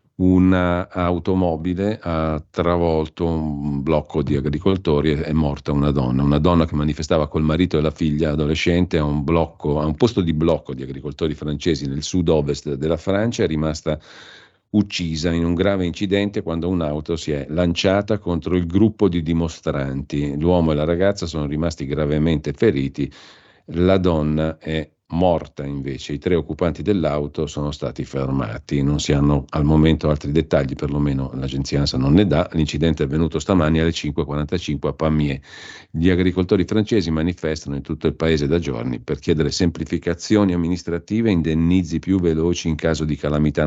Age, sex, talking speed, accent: 50-69, male, 160 wpm, native